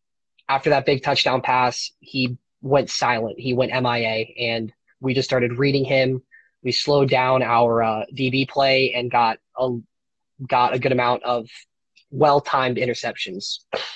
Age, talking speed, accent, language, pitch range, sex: 20-39, 145 wpm, American, English, 125-140 Hz, male